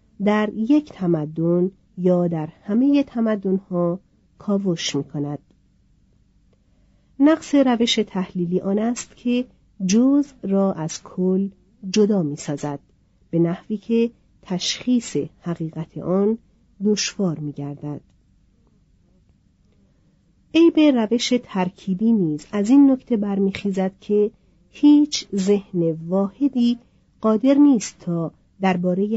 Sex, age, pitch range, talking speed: female, 40-59, 165-220 Hz, 100 wpm